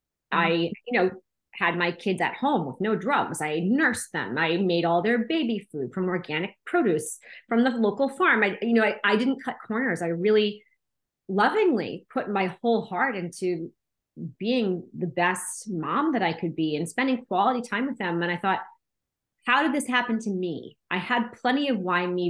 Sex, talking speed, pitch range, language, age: female, 195 wpm, 170-215 Hz, English, 30-49